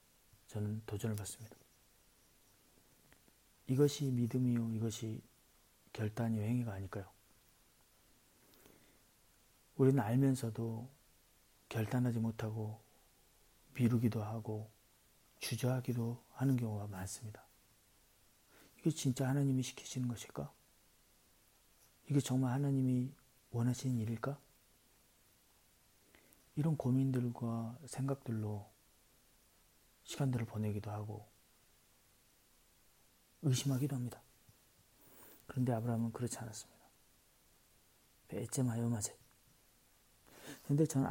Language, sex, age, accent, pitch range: Korean, male, 40-59, native, 110-130 Hz